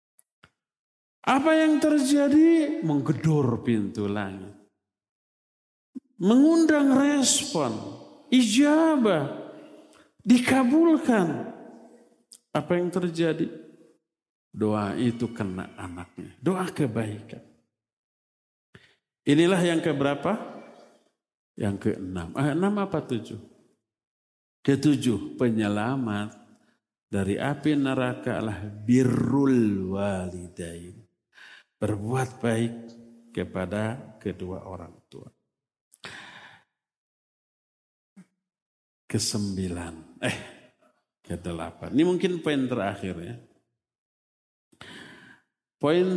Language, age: Indonesian, 50-69